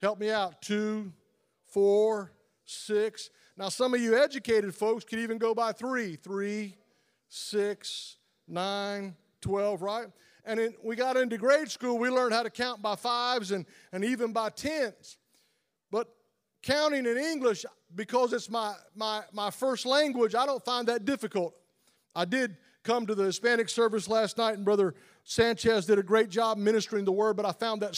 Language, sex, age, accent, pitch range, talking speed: English, male, 40-59, American, 205-240 Hz, 170 wpm